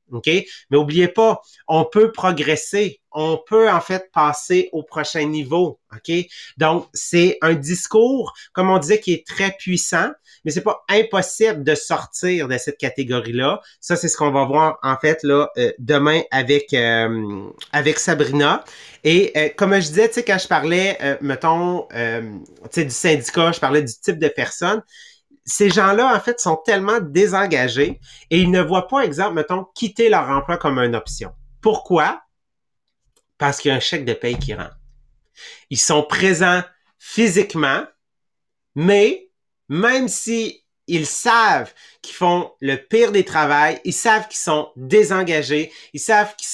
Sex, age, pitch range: male, 30-49, 150-195 Hz